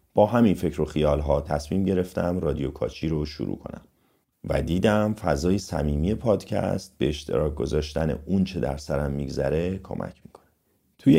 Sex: male